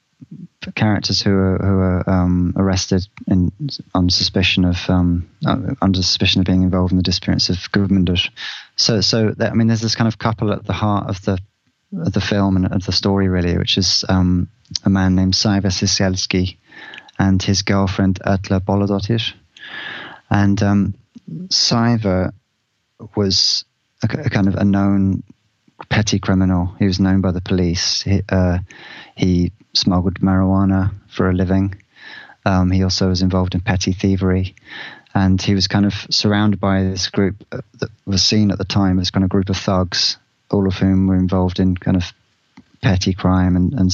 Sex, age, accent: male, 20-39, British